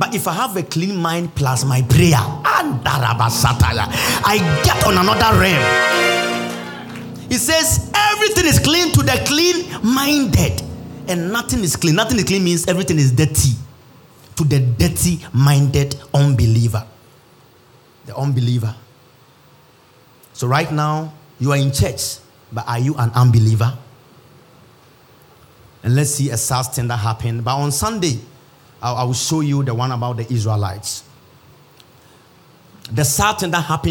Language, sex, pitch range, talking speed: English, male, 120-155 Hz, 135 wpm